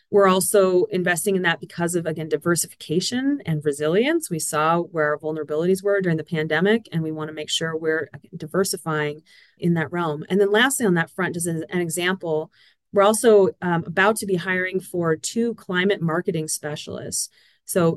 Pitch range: 170-205 Hz